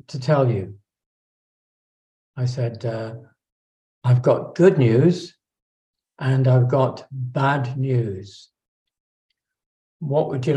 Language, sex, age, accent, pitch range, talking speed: English, male, 60-79, British, 120-140 Hz, 100 wpm